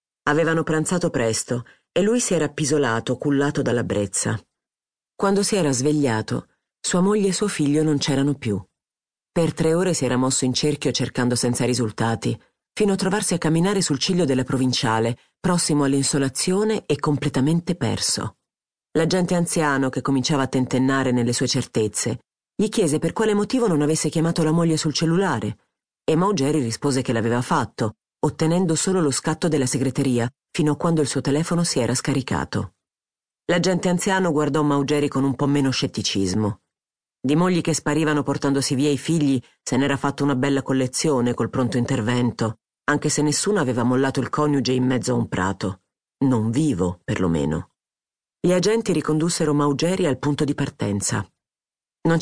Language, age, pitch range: Italian, 40-59, 125-160 Hz